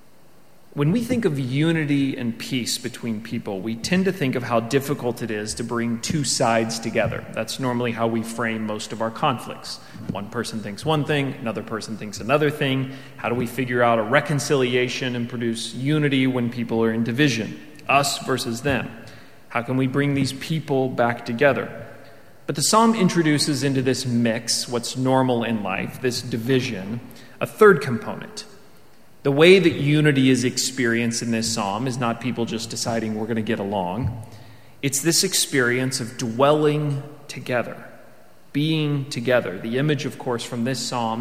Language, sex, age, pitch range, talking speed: English, male, 30-49, 115-140 Hz, 170 wpm